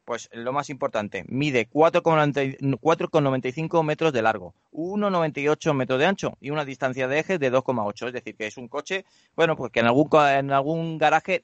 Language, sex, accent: Spanish, male, Spanish